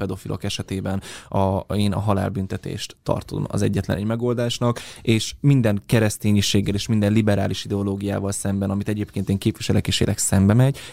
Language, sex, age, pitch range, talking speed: Hungarian, male, 20-39, 100-125 Hz, 150 wpm